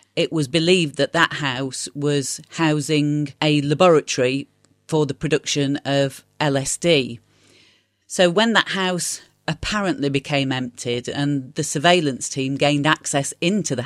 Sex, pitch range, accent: female, 135-155 Hz, British